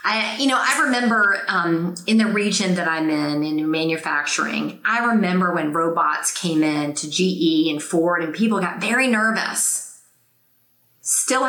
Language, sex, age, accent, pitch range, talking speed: English, female, 30-49, American, 165-215 Hz, 150 wpm